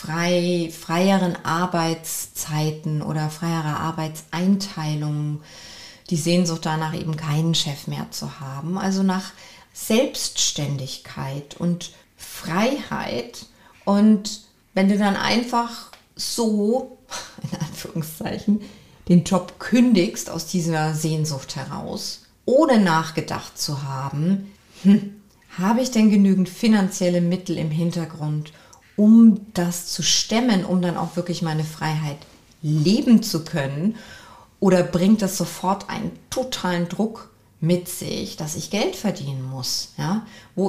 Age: 30-49